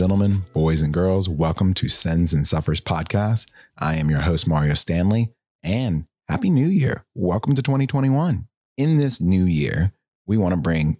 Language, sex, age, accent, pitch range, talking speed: English, male, 30-49, American, 85-125 Hz, 170 wpm